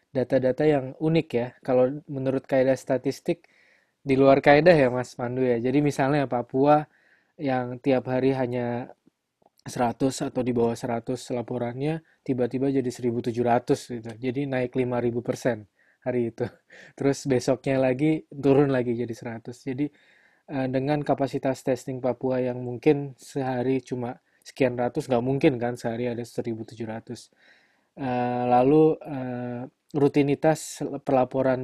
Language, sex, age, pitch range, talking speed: Indonesian, male, 20-39, 120-135 Hz, 120 wpm